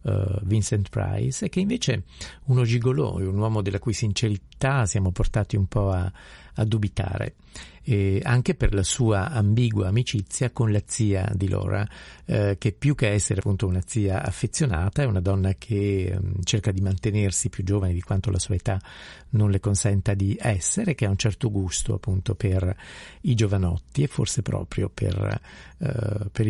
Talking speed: 170 wpm